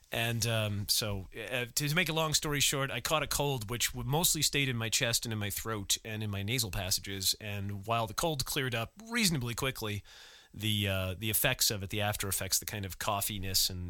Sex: male